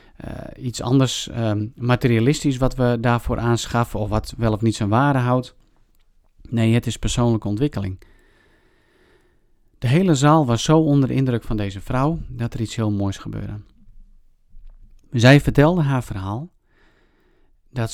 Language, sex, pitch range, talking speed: Dutch, male, 105-125 Hz, 145 wpm